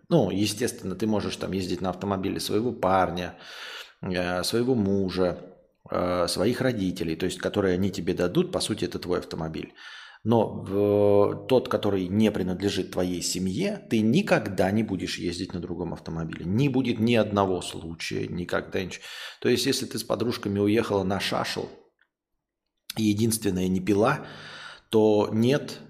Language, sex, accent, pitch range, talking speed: Russian, male, native, 90-110 Hz, 145 wpm